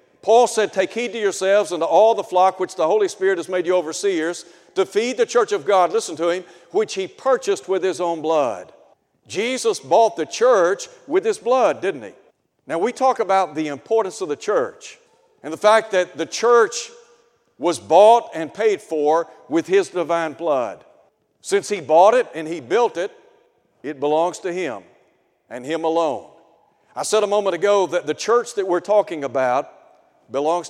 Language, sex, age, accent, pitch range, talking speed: English, male, 60-79, American, 165-235 Hz, 190 wpm